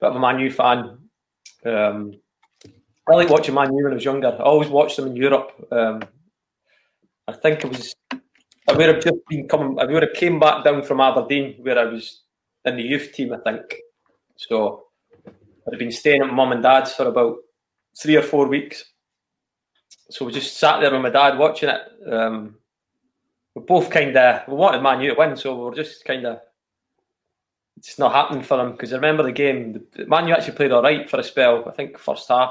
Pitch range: 120-155 Hz